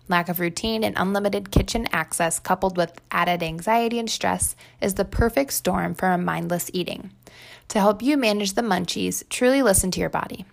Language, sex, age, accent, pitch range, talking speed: English, female, 20-39, American, 170-210 Hz, 180 wpm